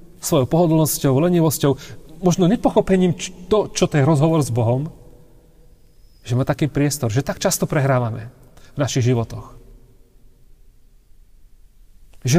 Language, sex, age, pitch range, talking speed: Slovak, male, 40-59, 120-160 Hz, 115 wpm